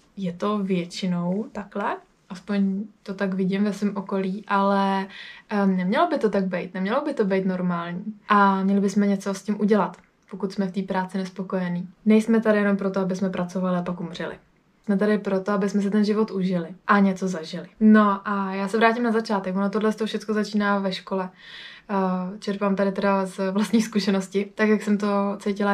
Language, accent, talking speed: Czech, native, 195 wpm